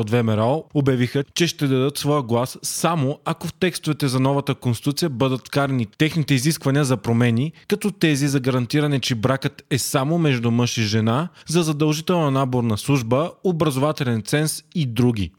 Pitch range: 125-155 Hz